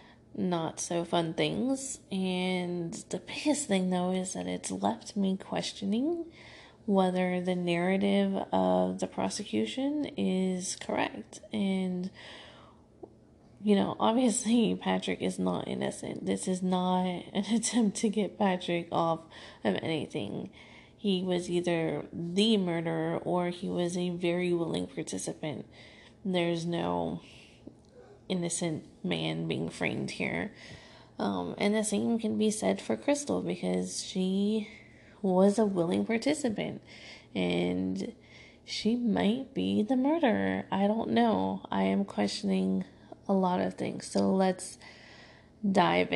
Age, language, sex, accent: 20-39, English, female, American